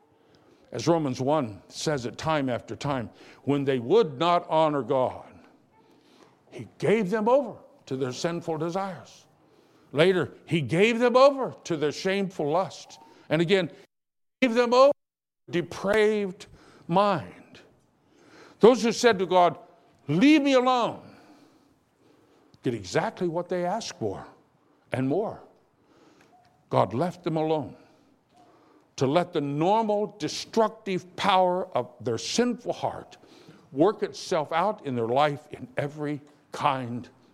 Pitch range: 145-210 Hz